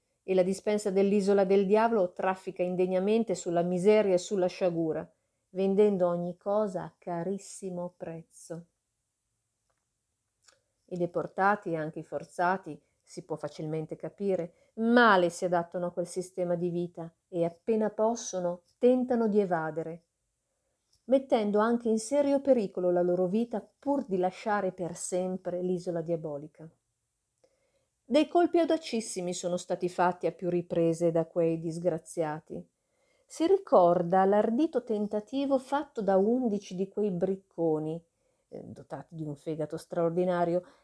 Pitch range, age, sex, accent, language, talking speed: 170-210 Hz, 40-59, female, native, Italian, 125 wpm